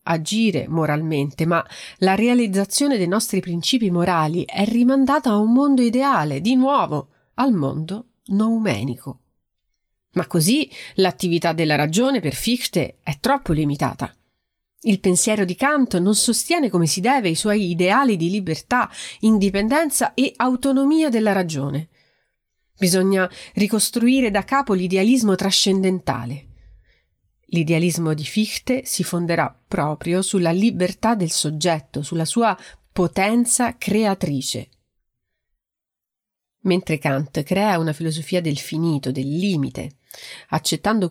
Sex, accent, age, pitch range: female, native, 40-59, 160-230 Hz